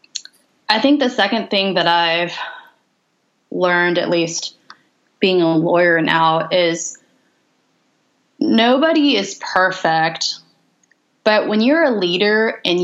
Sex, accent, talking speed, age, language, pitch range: female, American, 110 wpm, 20-39, English, 165-200 Hz